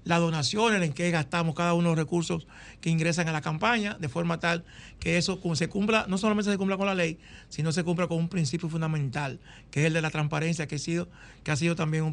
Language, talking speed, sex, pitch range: Spanish, 245 wpm, male, 155-175 Hz